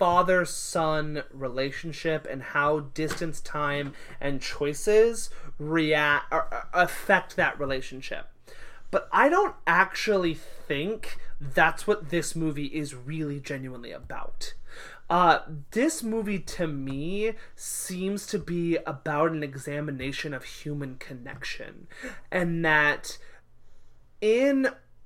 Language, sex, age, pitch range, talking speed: English, male, 30-49, 150-180 Hz, 105 wpm